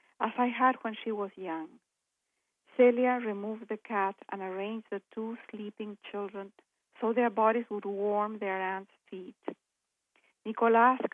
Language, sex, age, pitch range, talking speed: English, female, 50-69, 190-230 Hz, 140 wpm